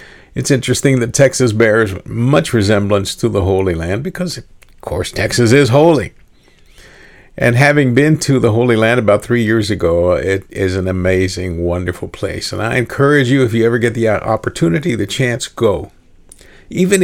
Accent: American